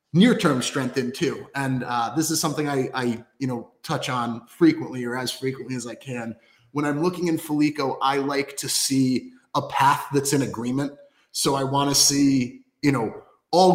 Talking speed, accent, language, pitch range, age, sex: 195 wpm, American, English, 130-160 Hz, 30-49, male